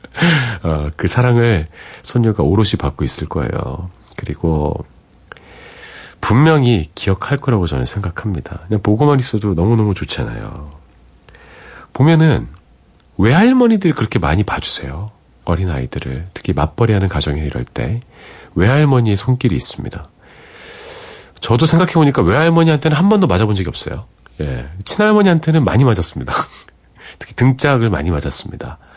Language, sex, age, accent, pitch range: Korean, male, 40-59, native, 80-130 Hz